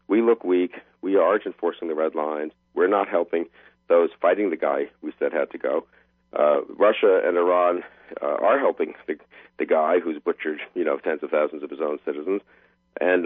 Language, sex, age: English, male, 50-69